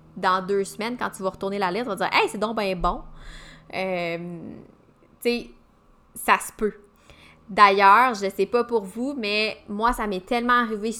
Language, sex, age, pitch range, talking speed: French, female, 20-39, 195-245 Hz, 200 wpm